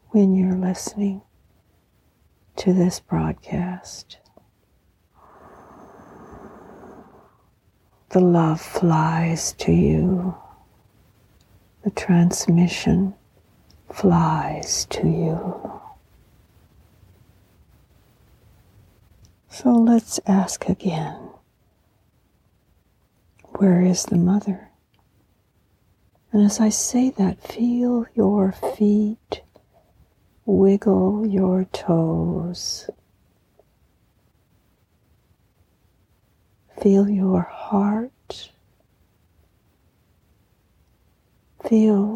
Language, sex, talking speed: English, female, 55 wpm